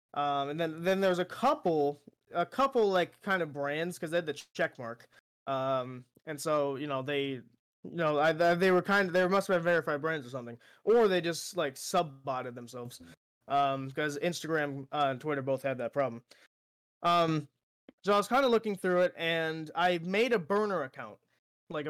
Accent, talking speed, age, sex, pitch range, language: American, 190 wpm, 20-39, male, 140-180 Hz, English